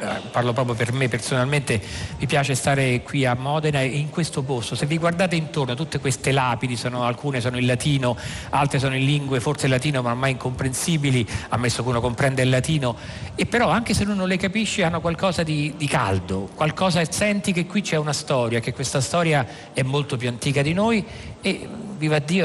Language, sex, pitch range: Italian, male, 125-155 Hz